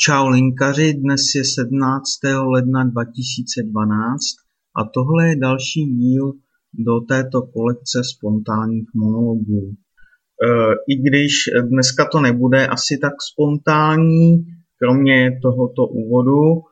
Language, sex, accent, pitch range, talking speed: Czech, male, native, 120-145 Hz, 105 wpm